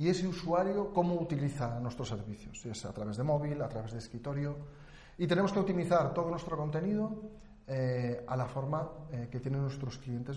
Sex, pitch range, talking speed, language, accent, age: male, 120-165 Hz, 190 wpm, Spanish, Spanish, 40-59